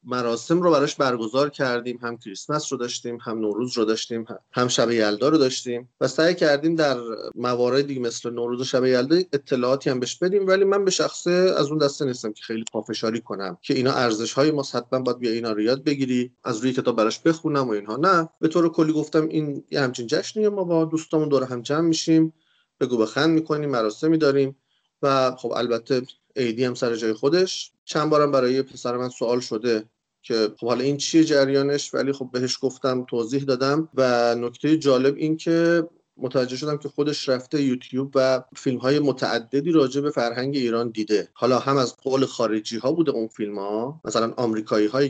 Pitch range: 115-150 Hz